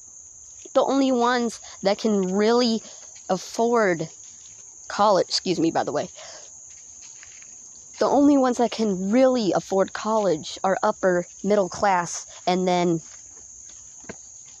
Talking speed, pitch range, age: 110 wpm, 200-305 Hz, 40-59